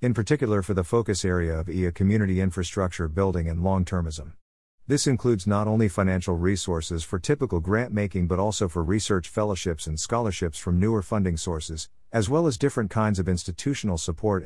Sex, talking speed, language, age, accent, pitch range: male, 180 wpm, English, 50-69, American, 90-110 Hz